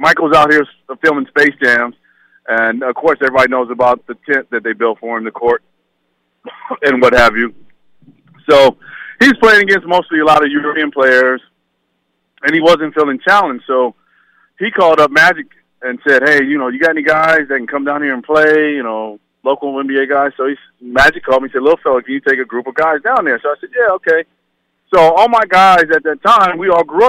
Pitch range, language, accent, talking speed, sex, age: 120-150 Hz, English, American, 215 wpm, male, 40-59